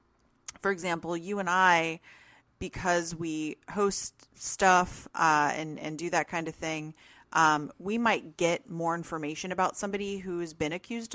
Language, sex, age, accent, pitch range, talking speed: English, female, 30-49, American, 155-195 Hz, 155 wpm